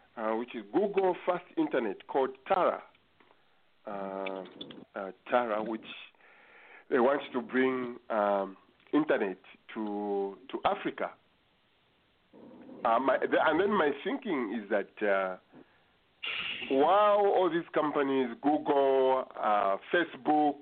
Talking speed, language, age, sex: 105 wpm, English, 50-69, male